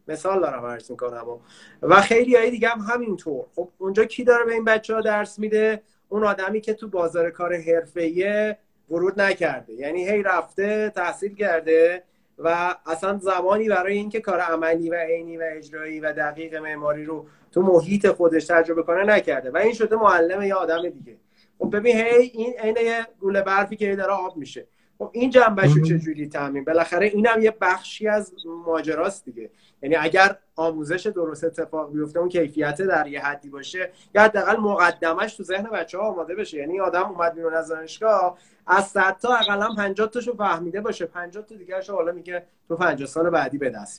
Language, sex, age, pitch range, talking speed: Persian, male, 30-49, 165-210 Hz, 175 wpm